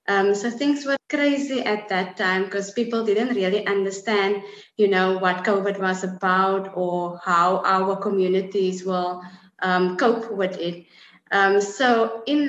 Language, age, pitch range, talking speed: English, 20-39, 190-230 Hz, 150 wpm